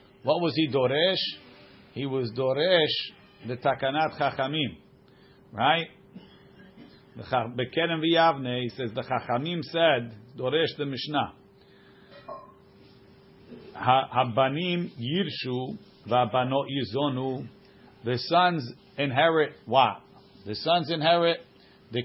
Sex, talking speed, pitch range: male, 85 wpm, 125-160 Hz